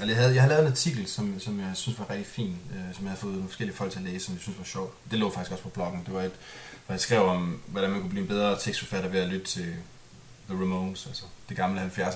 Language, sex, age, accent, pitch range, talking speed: Danish, male, 20-39, native, 95-125 Hz, 290 wpm